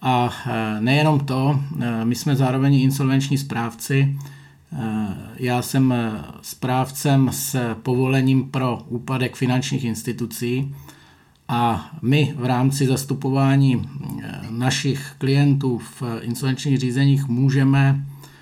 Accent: native